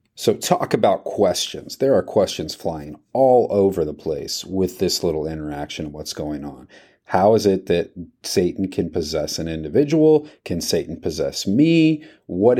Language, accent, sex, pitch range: English, American, male, 80-105 Hz